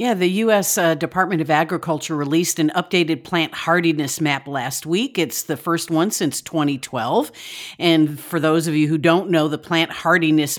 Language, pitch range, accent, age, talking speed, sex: English, 155-195 Hz, American, 50-69, 180 wpm, female